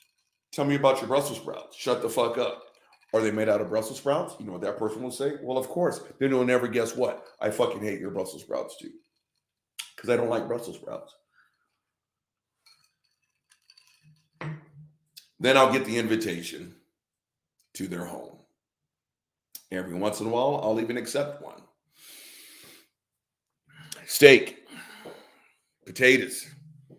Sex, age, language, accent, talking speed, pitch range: male, 50-69, English, American, 140 wpm, 105-145 Hz